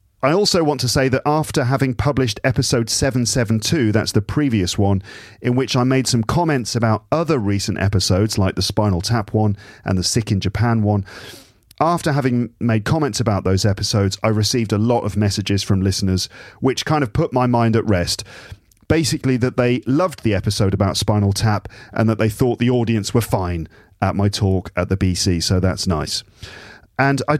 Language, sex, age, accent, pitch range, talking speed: English, male, 40-59, British, 100-130 Hz, 190 wpm